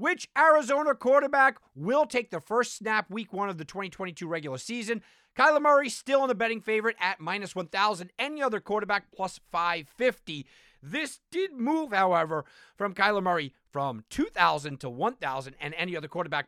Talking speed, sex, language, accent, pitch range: 165 wpm, male, English, American, 130-210 Hz